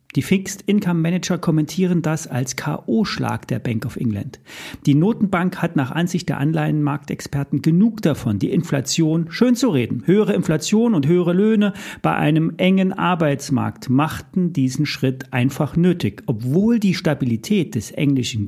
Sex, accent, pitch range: male, German, 130-180 Hz